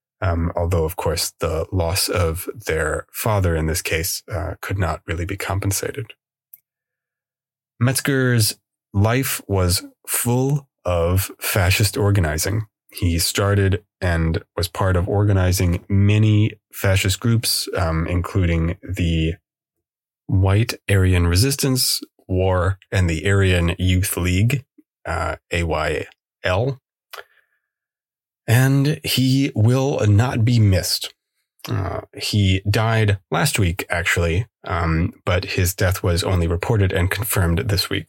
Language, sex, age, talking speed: English, male, 30-49, 115 wpm